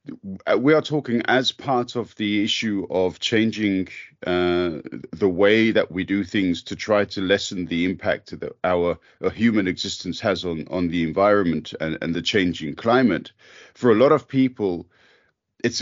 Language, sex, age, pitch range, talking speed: English, male, 40-59, 100-130 Hz, 165 wpm